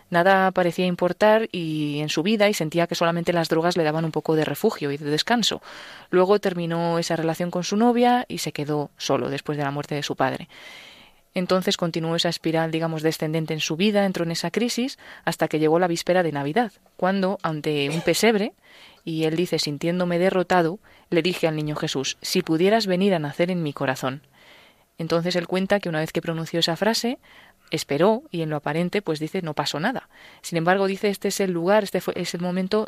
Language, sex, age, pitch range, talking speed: Spanish, female, 20-39, 160-190 Hz, 205 wpm